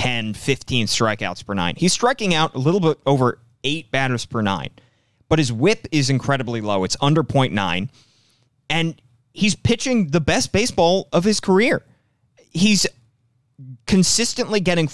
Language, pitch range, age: English, 110-155 Hz, 30-49